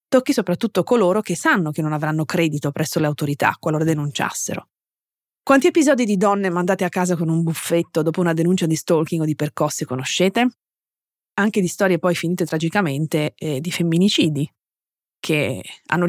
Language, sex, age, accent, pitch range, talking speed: Italian, female, 30-49, native, 155-205 Hz, 165 wpm